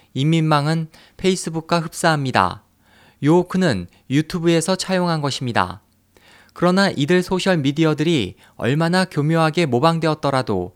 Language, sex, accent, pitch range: Korean, male, native, 135-170 Hz